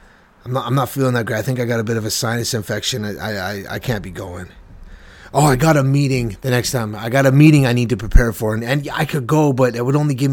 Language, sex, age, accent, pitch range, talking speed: English, male, 30-49, American, 110-140 Hz, 290 wpm